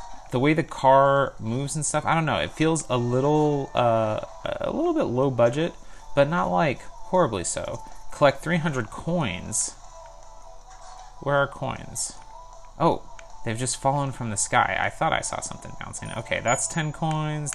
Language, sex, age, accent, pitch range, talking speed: English, male, 30-49, American, 100-145 Hz, 165 wpm